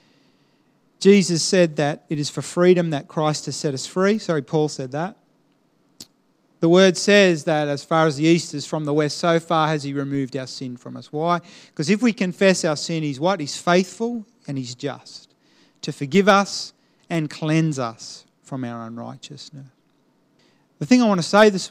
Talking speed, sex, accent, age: 190 wpm, male, Australian, 40-59